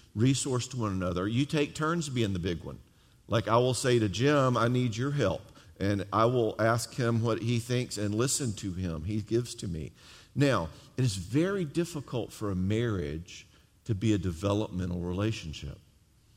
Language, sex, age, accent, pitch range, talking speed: English, male, 50-69, American, 100-125 Hz, 185 wpm